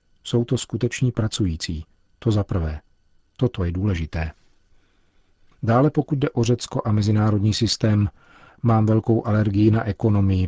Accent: native